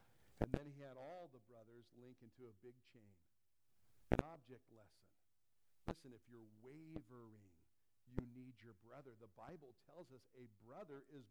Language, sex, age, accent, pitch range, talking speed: English, male, 60-79, American, 125-205 Hz, 160 wpm